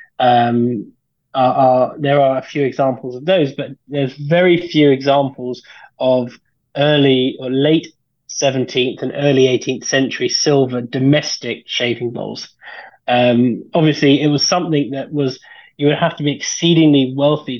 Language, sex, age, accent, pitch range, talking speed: English, male, 20-39, British, 125-145 Hz, 135 wpm